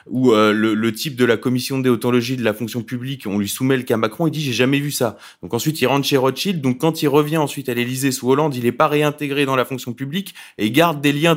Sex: male